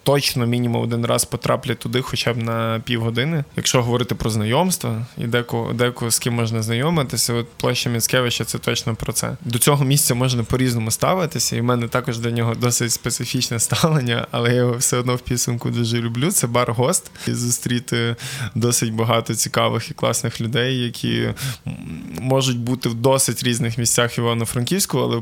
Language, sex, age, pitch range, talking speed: Ukrainian, male, 20-39, 115-130 Hz, 170 wpm